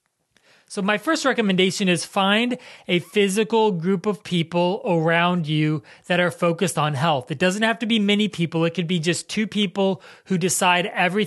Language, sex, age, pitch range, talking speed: English, male, 30-49, 165-195 Hz, 180 wpm